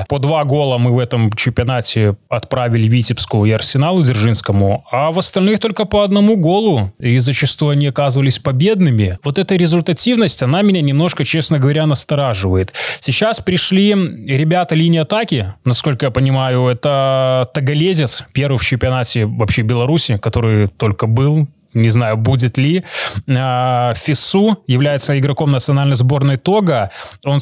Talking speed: 135 wpm